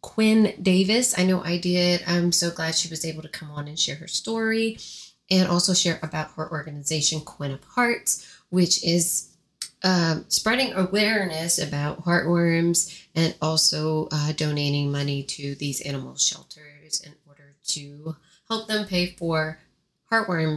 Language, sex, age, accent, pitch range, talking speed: English, female, 30-49, American, 160-195 Hz, 150 wpm